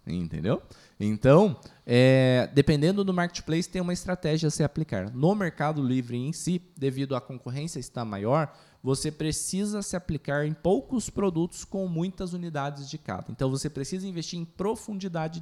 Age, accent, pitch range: 20-39, Brazilian, 140-195 Hz